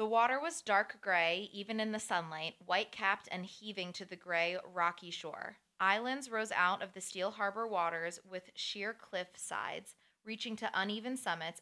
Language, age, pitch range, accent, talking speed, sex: English, 20-39, 175-215 Hz, American, 170 wpm, female